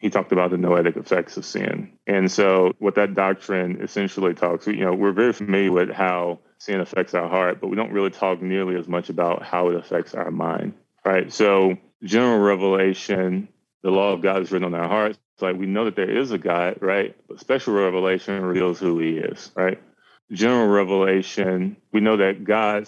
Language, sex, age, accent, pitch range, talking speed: English, male, 20-39, American, 95-105 Hz, 200 wpm